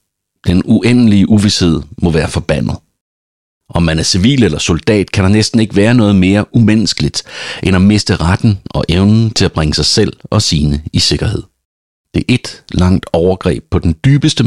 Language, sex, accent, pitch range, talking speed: Danish, male, native, 80-110 Hz, 180 wpm